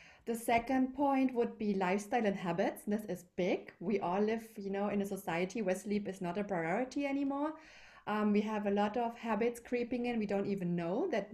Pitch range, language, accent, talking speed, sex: 190-240 Hz, English, German, 210 wpm, female